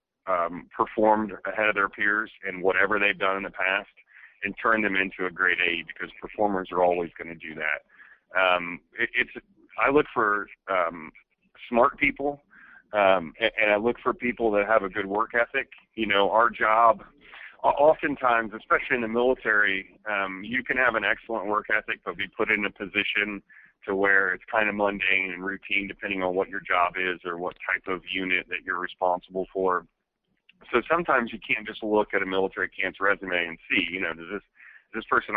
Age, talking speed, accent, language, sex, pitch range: 40-59, 195 wpm, American, English, male, 95-110 Hz